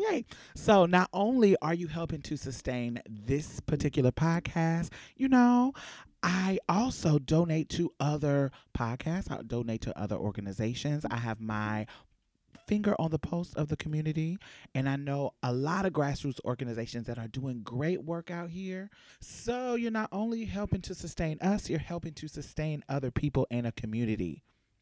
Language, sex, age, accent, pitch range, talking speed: English, male, 30-49, American, 135-190 Hz, 160 wpm